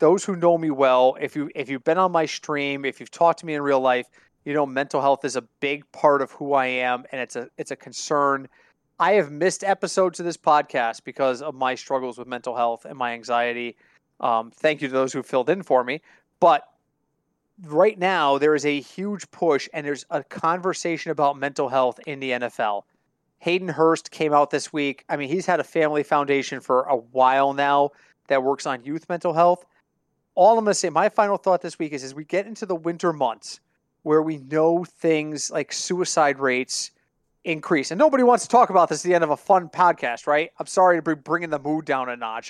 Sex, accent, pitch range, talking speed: male, American, 140-175 Hz, 225 wpm